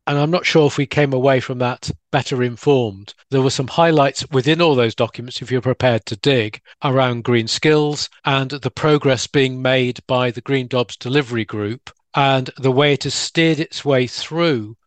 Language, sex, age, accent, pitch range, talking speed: English, male, 40-59, British, 120-145 Hz, 195 wpm